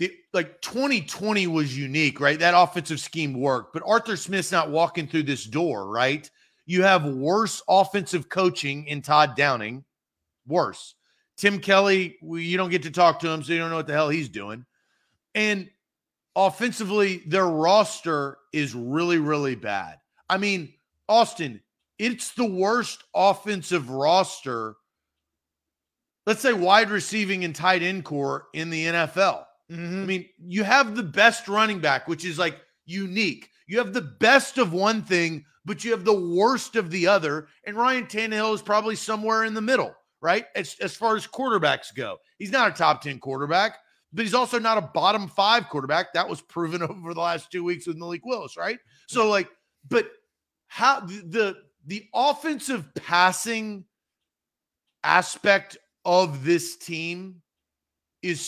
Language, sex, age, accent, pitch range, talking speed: English, male, 40-59, American, 160-210 Hz, 160 wpm